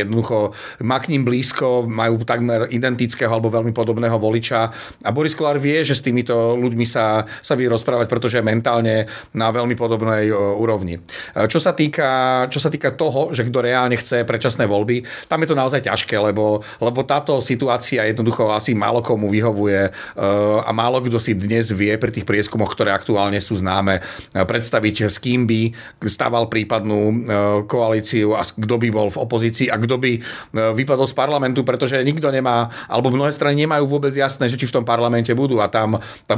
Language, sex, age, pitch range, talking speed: Slovak, male, 40-59, 110-125 Hz, 170 wpm